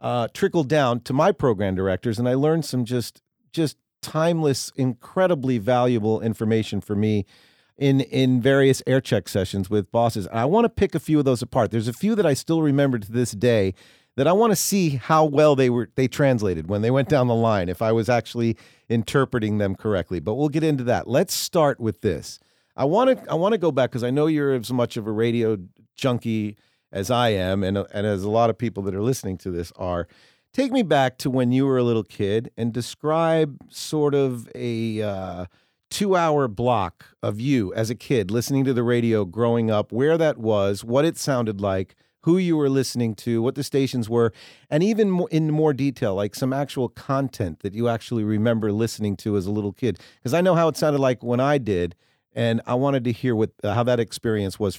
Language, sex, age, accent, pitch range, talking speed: English, male, 50-69, American, 110-140 Hz, 220 wpm